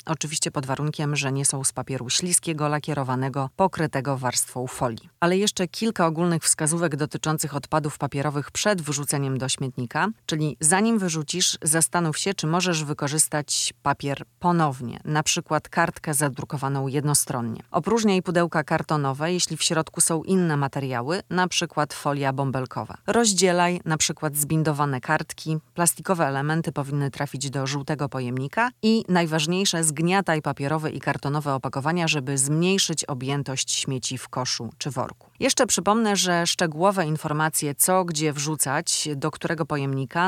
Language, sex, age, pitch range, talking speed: Polish, female, 30-49, 140-170 Hz, 135 wpm